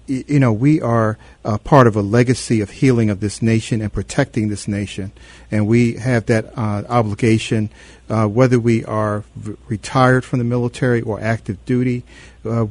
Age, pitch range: 50-69, 105-125 Hz